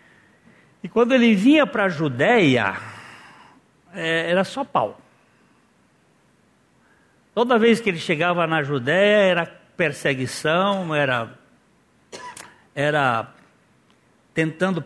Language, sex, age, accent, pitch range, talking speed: Portuguese, male, 60-79, Brazilian, 155-205 Hz, 90 wpm